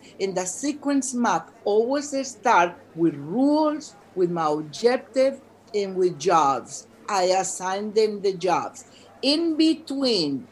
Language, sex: English, female